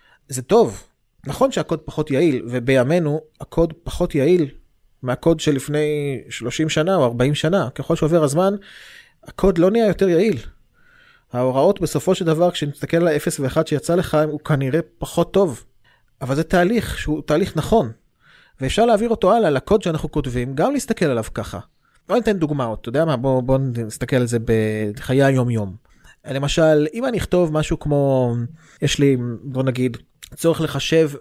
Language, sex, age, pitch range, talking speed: Hebrew, male, 20-39, 130-180 Hz, 140 wpm